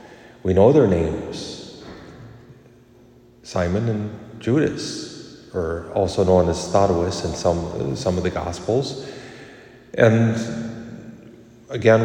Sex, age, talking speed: male, 40-59, 100 wpm